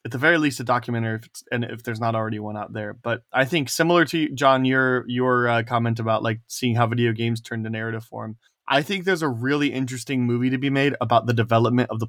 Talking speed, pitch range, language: 255 wpm, 120-145 Hz, English